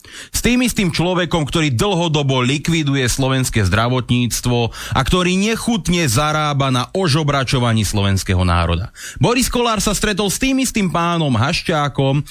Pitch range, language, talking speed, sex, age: 125-205 Hz, Slovak, 125 wpm, male, 30-49